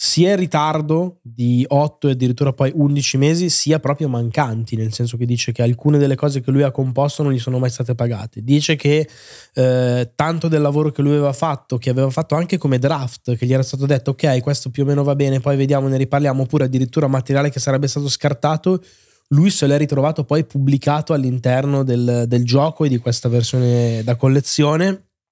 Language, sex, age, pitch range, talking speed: Italian, male, 20-39, 125-145 Hz, 205 wpm